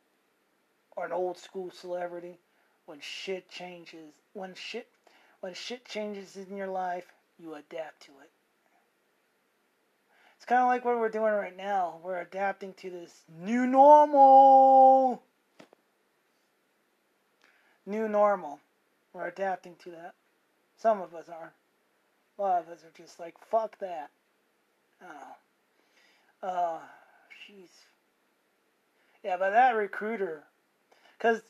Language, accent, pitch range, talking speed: English, American, 185-245 Hz, 120 wpm